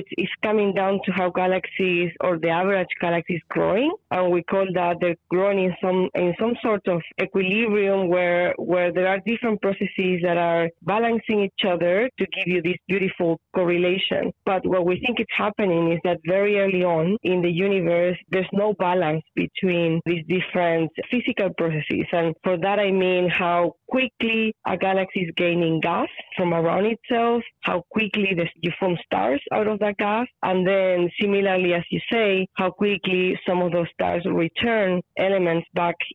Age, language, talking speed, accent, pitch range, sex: 20-39, English, 175 wpm, Spanish, 175-200 Hz, female